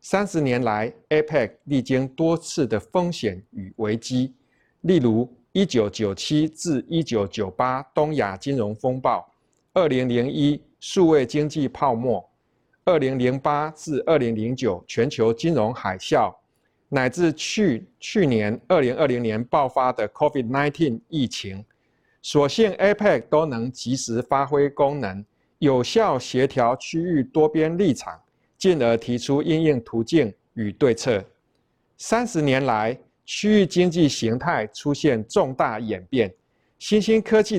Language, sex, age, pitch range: Chinese, male, 50-69, 115-160 Hz